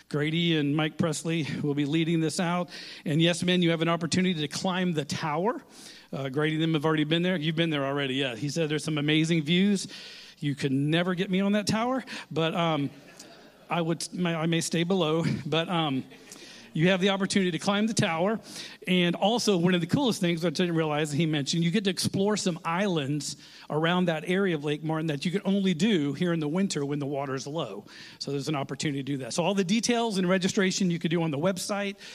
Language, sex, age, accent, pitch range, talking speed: English, male, 40-59, American, 155-190 Hz, 230 wpm